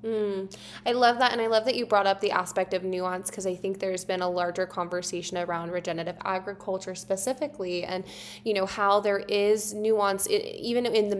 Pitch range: 185-220 Hz